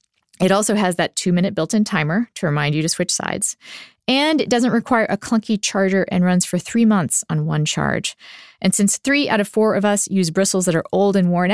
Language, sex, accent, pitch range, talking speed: English, female, American, 180-230 Hz, 225 wpm